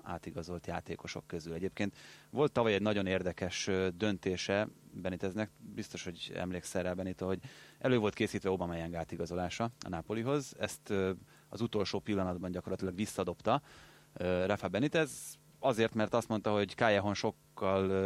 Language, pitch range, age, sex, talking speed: Hungarian, 95-115 Hz, 30-49, male, 130 wpm